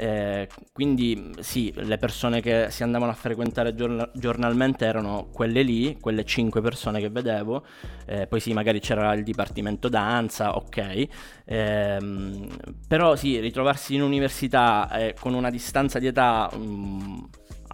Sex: male